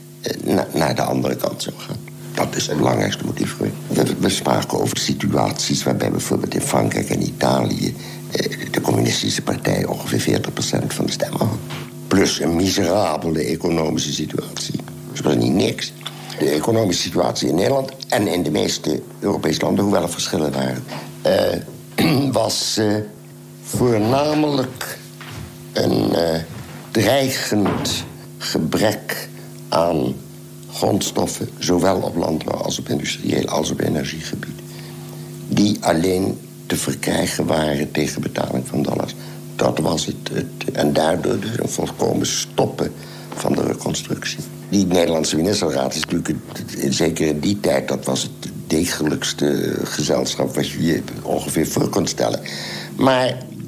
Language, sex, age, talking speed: Dutch, male, 60-79, 130 wpm